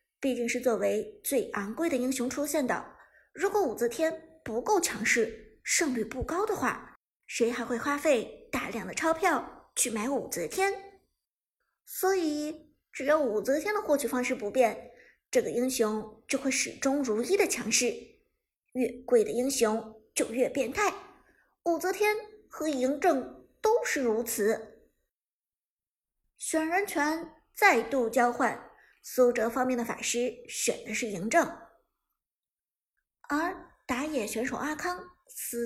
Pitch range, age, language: 235-330 Hz, 50-69, Chinese